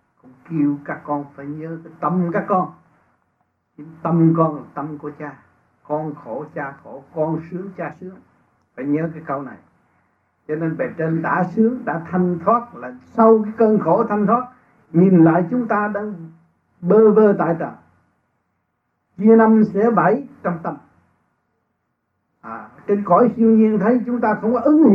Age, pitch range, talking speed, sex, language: 60-79, 145-195 Hz, 165 wpm, male, Vietnamese